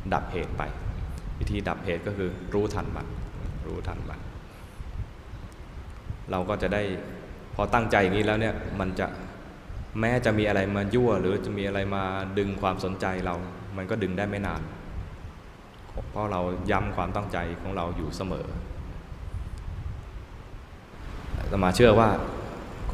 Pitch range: 85-100 Hz